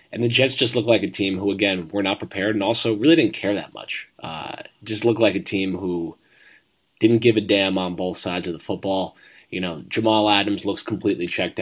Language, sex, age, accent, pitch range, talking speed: English, male, 20-39, American, 90-105 Hz, 225 wpm